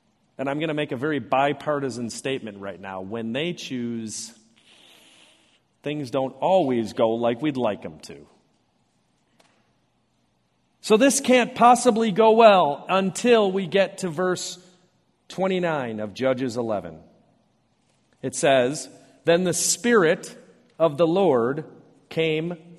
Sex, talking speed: male, 125 wpm